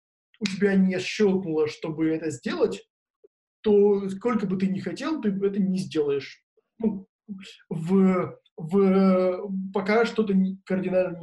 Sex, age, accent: male, 20-39, native